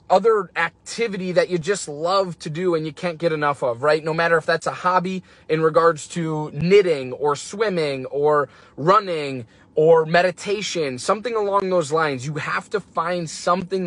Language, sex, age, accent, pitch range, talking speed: English, male, 20-39, American, 150-190 Hz, 175 wpm